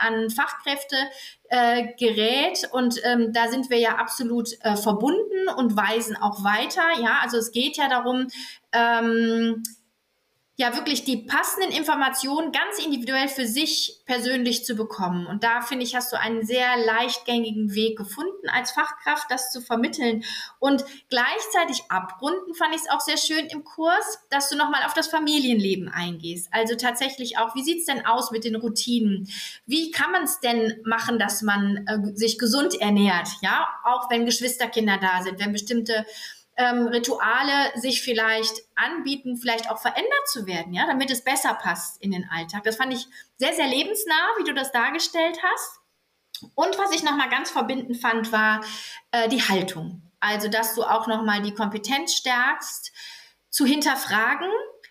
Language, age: German, 30-49